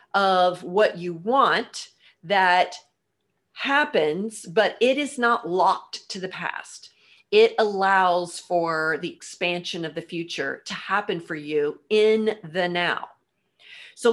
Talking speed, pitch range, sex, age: 125 wpm, 180-235 Hz, female, 40-59